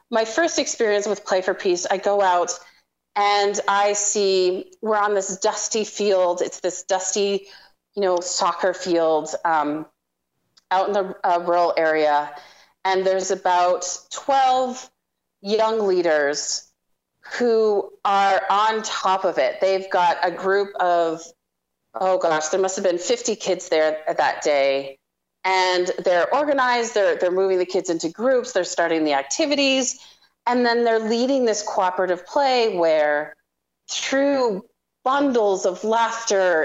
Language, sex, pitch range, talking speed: English, female, 175-220 Hz, 140 wpm